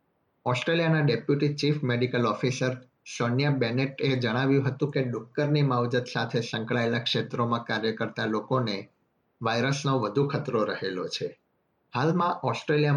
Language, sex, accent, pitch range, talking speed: Gujarati, male, native, 115-140 Hz, 95 wpm